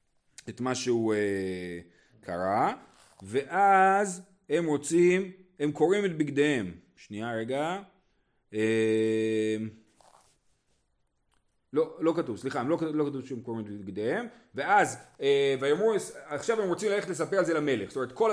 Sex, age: male, 40-59